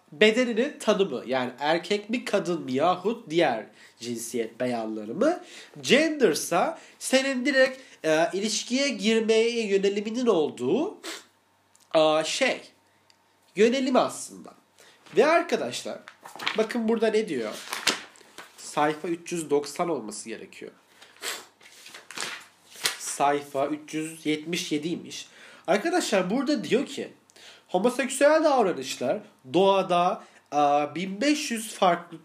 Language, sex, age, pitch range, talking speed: Turkish, male, 30-49, 145-225 Hz, 85 wpm